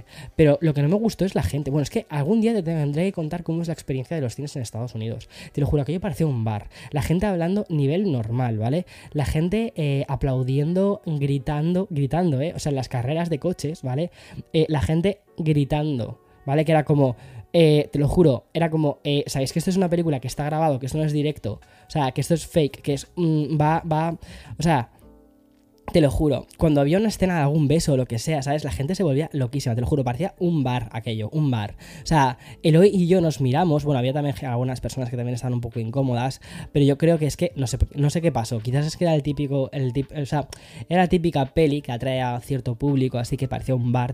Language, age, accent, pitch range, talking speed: Spanish, 10-29, Spanish, 130-160 Hz, 245 wpm